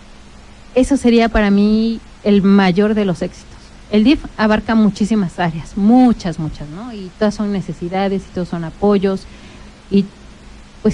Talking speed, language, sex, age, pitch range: 150 wpm, Spanish, female, 30-49, 185-220 Hz